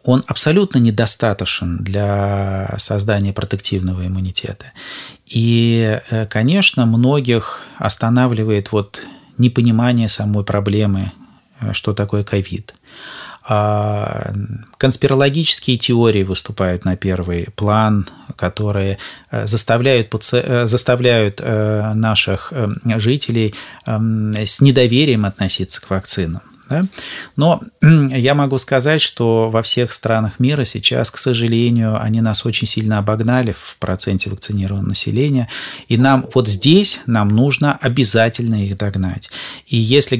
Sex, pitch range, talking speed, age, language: male, 100-130 Hz, 95 wpm, 30-49, Russian